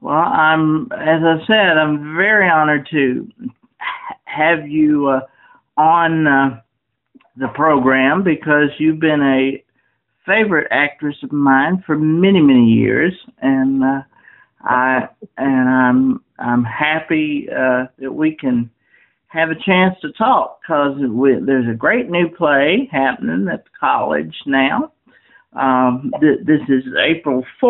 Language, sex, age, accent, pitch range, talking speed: English, male, 50-69, American, 130-165 Hz, 130 wpm